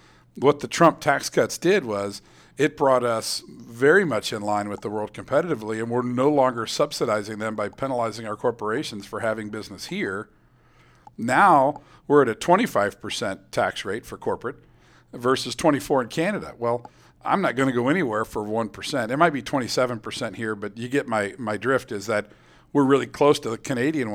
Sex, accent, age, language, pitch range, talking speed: male, American, 50-69, English, 110-135 Hz, 180 wpm